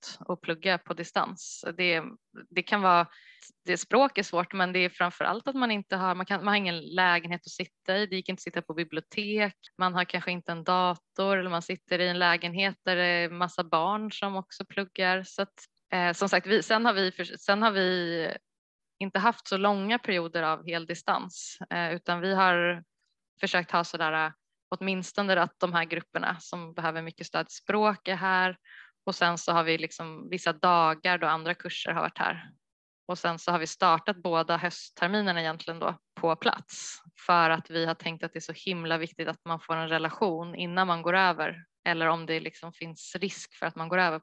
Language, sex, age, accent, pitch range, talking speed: Swedish, female, 20-39, native, 170-195 Hz, 205 wpm